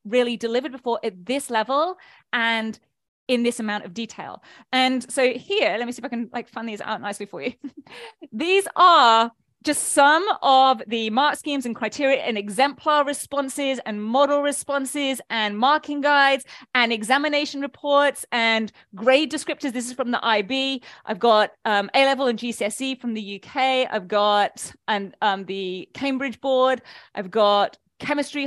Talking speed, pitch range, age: 160 wpm, 230-285 Hz, 30-49